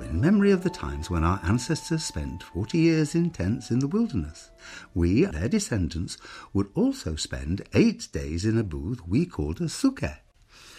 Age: 60-79